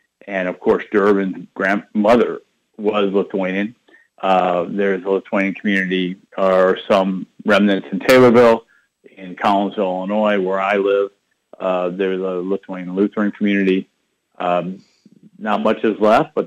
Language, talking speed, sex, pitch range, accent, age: English, 130 wpm, male, 95-110 Hz, American, 50-69